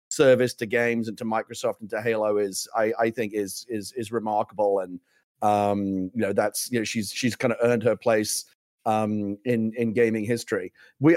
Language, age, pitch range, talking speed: English, 30-49, 115-135 Hz, 200 wpm